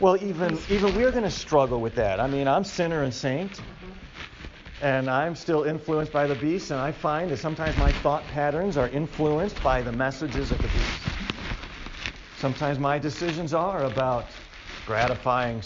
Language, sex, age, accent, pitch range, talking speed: English, male, 50-69, American, 110-150 Hz, 170 wpm